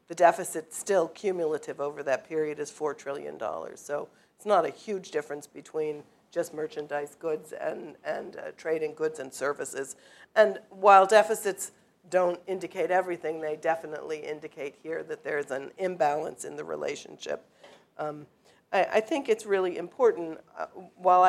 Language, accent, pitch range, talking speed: English, American, 155-190 Hz, 150 wpm